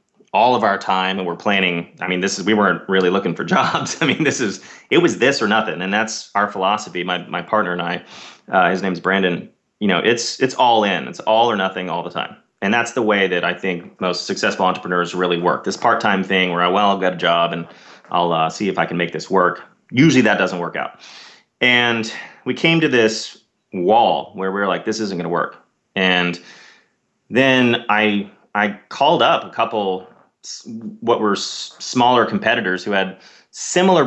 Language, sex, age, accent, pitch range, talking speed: English, male, 30-49, American, 90-110 Hz, 210 wpm